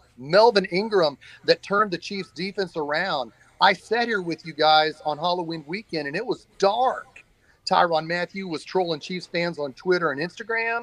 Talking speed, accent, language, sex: 170 wpm, American, English, male